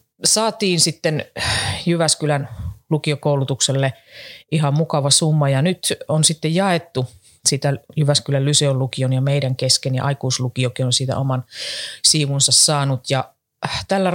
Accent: native